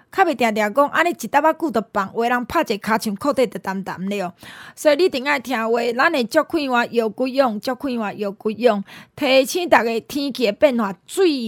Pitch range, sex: 210-290 Hz, female